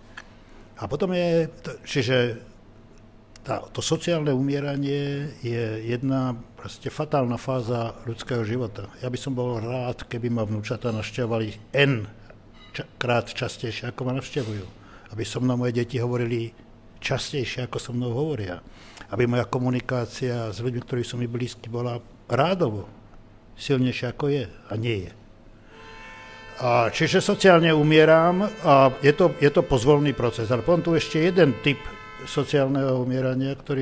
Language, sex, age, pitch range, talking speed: Slovak, male, 60-79, 110-140 Hz, 135 wpm